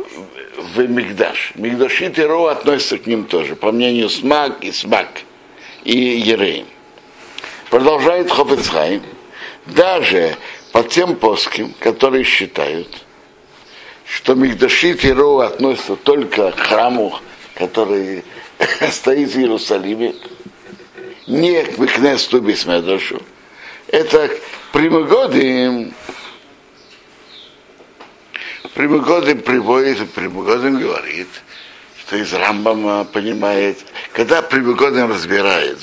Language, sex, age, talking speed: Russian, male, 60-79, 90 wpm